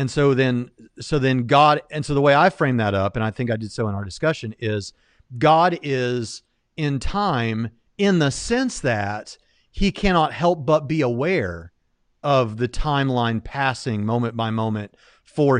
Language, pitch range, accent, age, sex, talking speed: English, 115-150 Hz, American, 40-59, male, 175 wpm